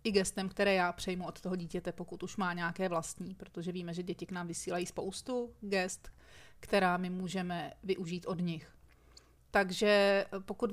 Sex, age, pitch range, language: female, 30-49, 185-210 Hz, Czech